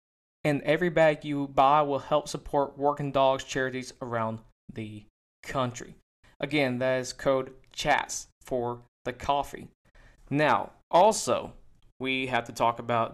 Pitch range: 125-150 Hz